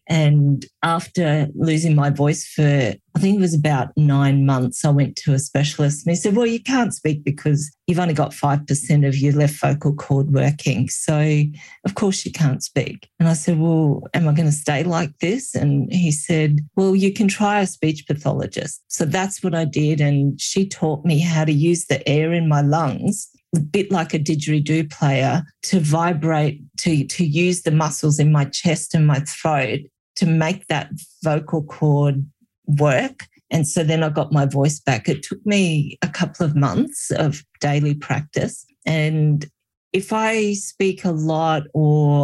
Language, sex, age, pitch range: English, female, 40-59, 145-170 Hz